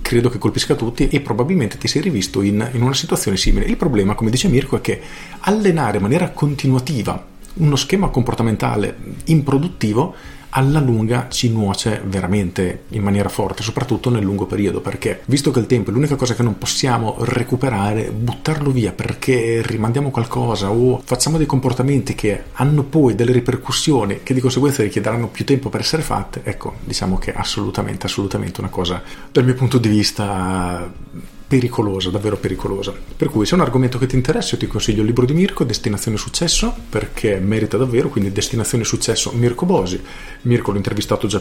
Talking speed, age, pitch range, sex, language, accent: 175 wpm, 40-59, 105-130 Hz, male, Italian, native